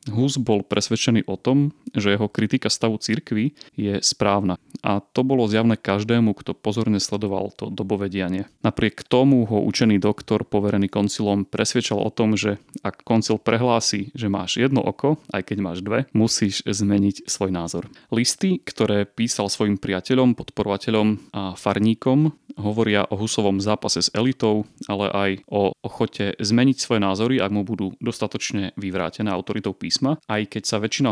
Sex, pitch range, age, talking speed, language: male, 100-115 Hz, 30-49, 155 wpm, Slovak